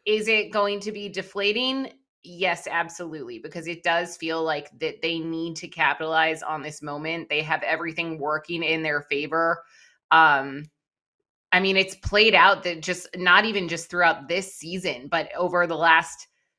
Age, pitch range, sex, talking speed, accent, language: 20-39, 155-195 Hz, female, 165 wpm, American, English